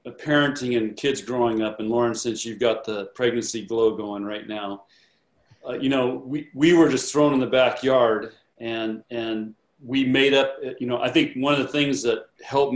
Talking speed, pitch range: 200 wpm, 115-130 Hz